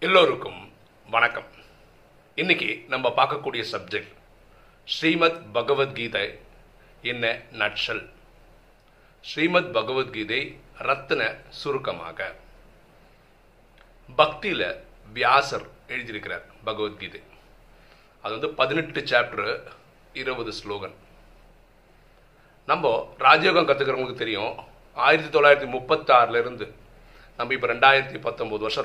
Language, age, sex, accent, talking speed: Tamil, 40-59, male, native, 75 wpm